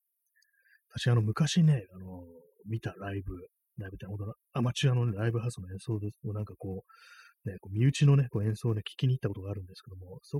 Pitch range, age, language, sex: 100-130 Hz, 30-49, Japanese, male